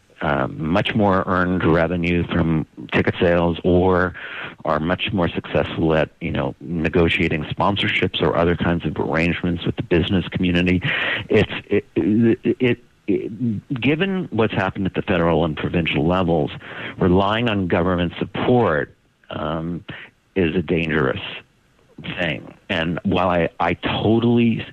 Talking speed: 135 wpm